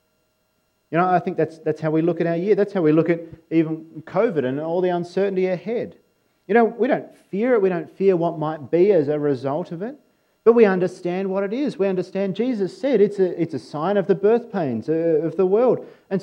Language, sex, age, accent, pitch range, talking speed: English, male, 40-59, Australian, 160-215 Hz, 235 wpm